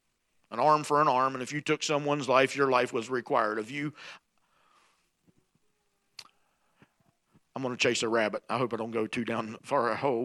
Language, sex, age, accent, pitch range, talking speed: English, male, 50-69, American, 130-155 Hz, 195 wpm